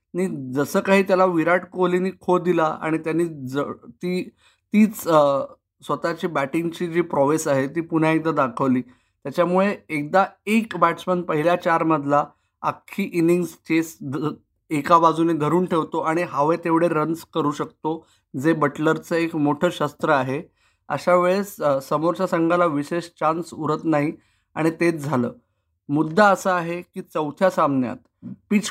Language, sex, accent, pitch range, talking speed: Marathi, male, native, 145-170 Hz, 140 wpm